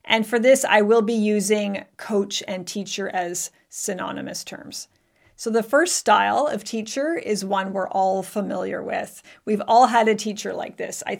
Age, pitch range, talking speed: 40-59, 205-255 Hz, 175 wpm